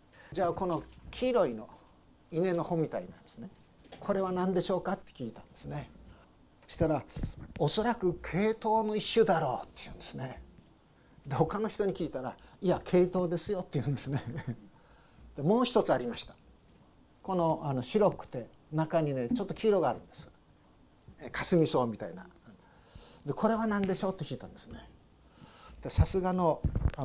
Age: 50-69